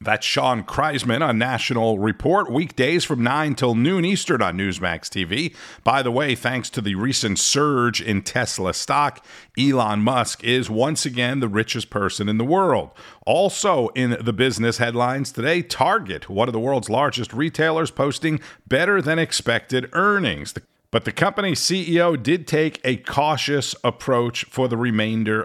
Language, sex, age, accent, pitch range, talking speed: English, male, 50-69, American, 105-155 Hz, 160 wpm